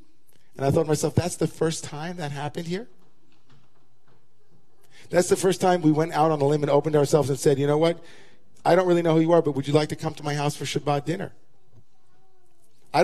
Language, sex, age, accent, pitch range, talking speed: English, male, 50-69, American, 130-165 Hz, 230 wpm